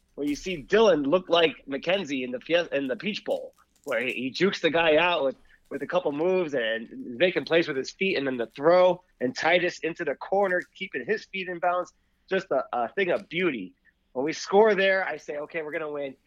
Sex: male